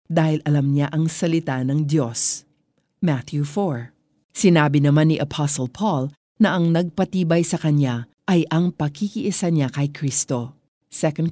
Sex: female